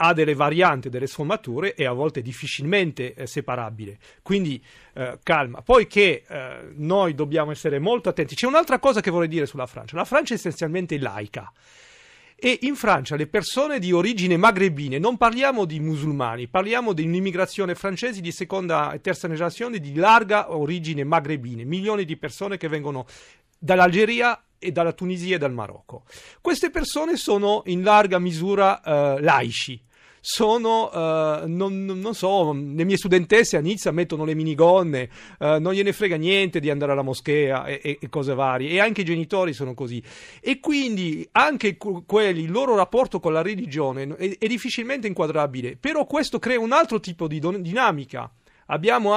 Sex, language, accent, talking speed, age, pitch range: male, Italian, native, 165 wpm, 40-59, 150-205 Hz